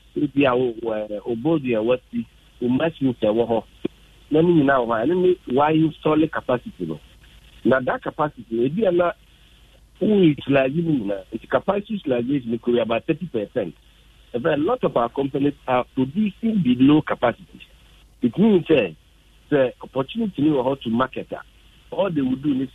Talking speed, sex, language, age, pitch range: 140 wpm, male, English, 50-69, 120-175 Hz